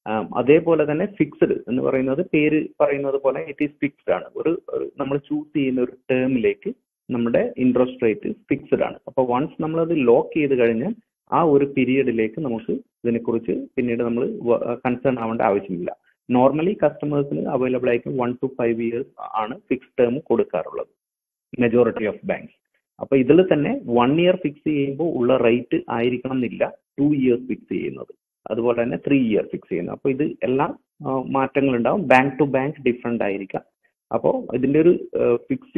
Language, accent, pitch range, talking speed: Malayalam, native, 120-150 Hz, 150 wpm